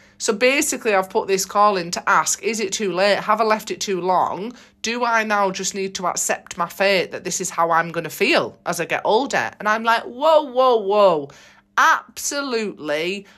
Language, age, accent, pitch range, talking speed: English, 40-59, British, 180-245 Hz, 210 wpm